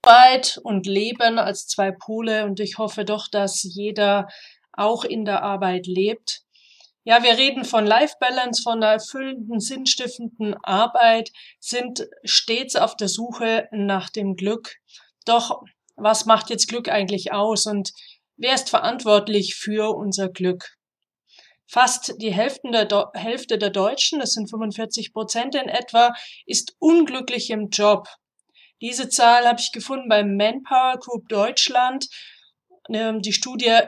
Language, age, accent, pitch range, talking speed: German, 30-49, German, 205-240 Hz, 135 wpm